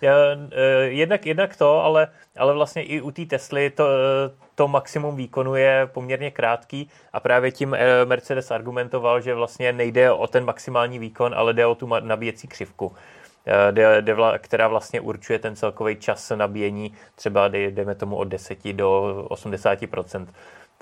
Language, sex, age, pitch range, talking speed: Czech, male, 20-39, 110-130 Hz, 135 wpm